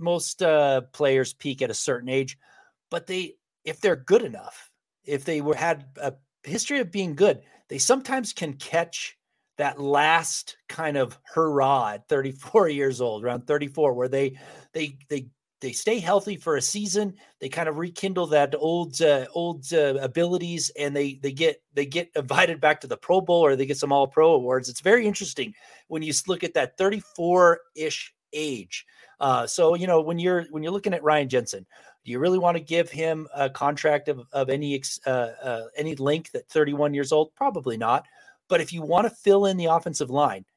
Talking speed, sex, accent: 195 wpm, male, American